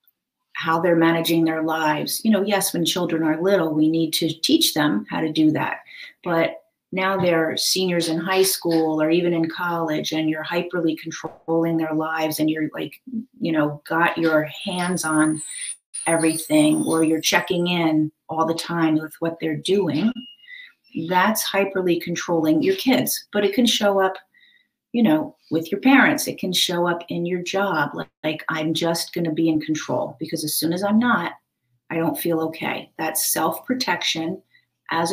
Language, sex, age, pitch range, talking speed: English, female, 40-59, 160-200 Hz, 175 wpm